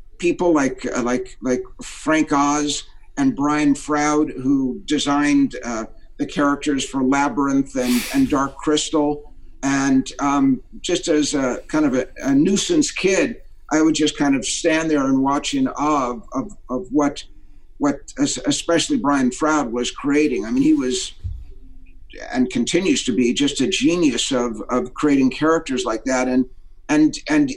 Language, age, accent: English, 50-69, American